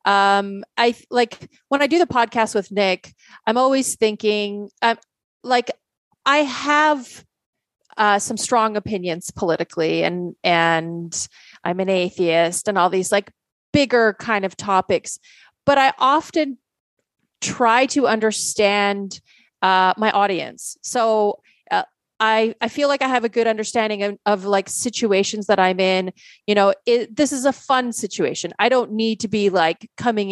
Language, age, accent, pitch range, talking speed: English, 30-49, American, 195-255 Hz, 150 wpm